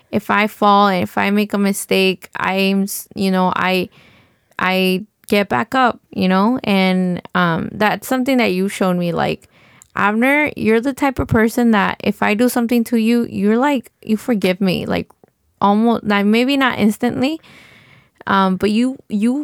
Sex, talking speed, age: female, 175 wpm, 20-39